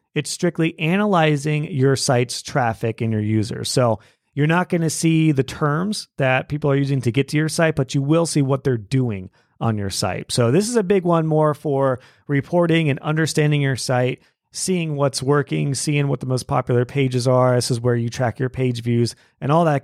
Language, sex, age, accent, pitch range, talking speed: English, male, 30-49, American, 120-160 Hz, 210 wpm